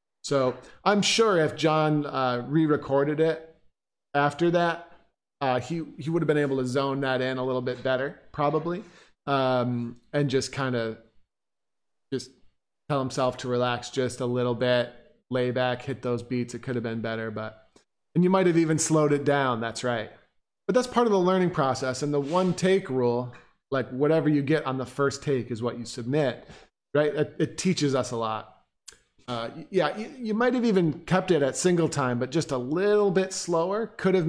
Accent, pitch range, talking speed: American, 125-160 Hz, 195 wpm